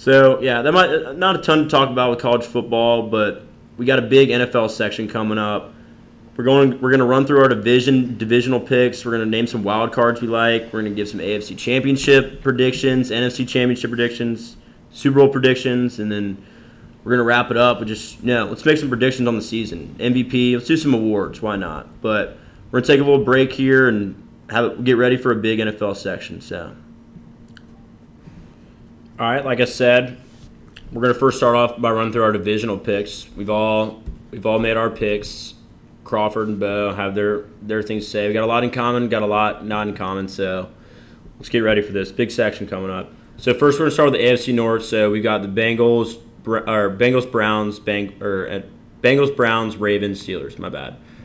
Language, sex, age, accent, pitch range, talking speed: English, male, 20-39, American, 105-125 Hz, 210 wpm